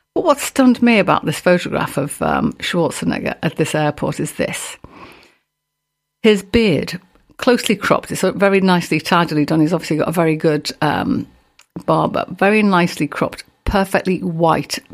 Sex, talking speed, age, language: female, 145 wpm, 50-69, English